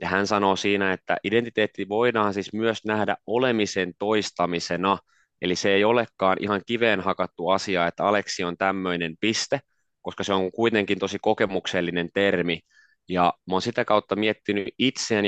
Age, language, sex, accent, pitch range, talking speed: 20-39, Finnish, male, native, 95-110 Hz, 155 wpm